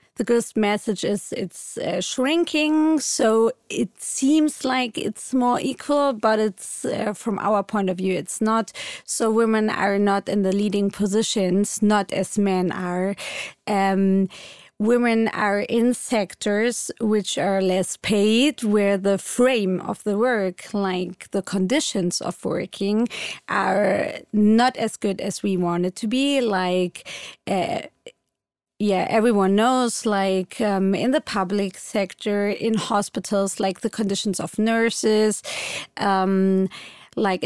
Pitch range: 195-230 Hz